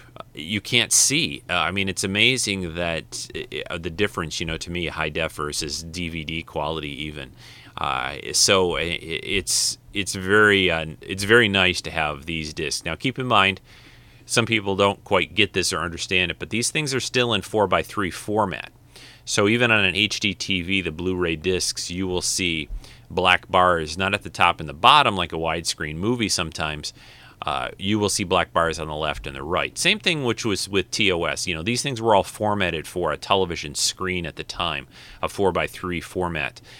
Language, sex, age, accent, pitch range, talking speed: English, male, 30-49, American, 80-105 Hz, 195 wpm